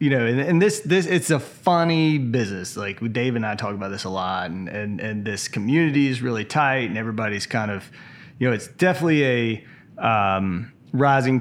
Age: 30-49